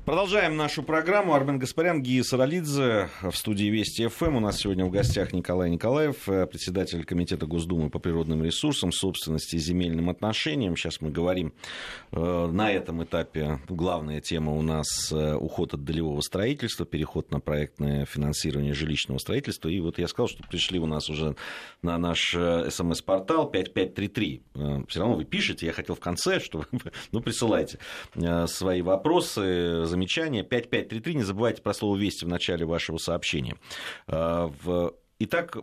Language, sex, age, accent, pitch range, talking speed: Russian, male, 30-49, native, 80-110 Hz, 145 wpm